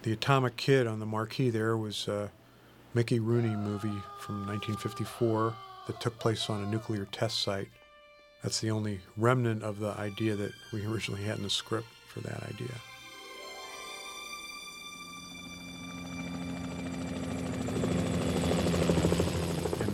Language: English